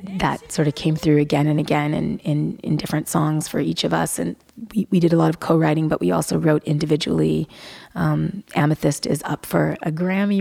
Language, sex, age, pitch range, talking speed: English, female, 20-39, 150-170 Hz, 215 wpm